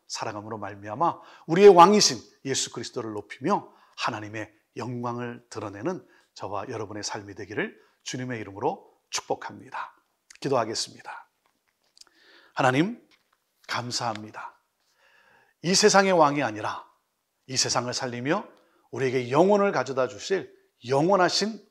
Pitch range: 120-195 Hz